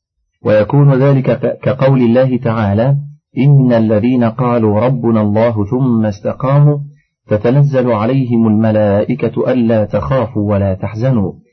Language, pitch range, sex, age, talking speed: Arabic, 110-140 Hz, male, 40-59, 100 wpm